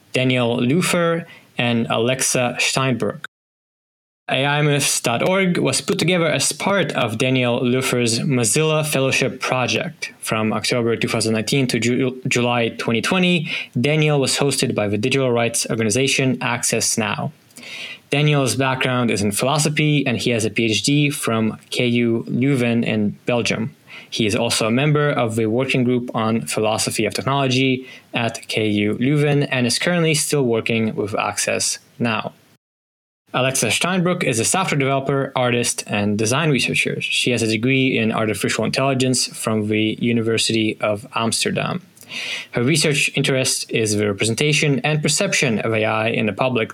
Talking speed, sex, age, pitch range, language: 140 wpm, male, 10-29, 115-140 Hz, English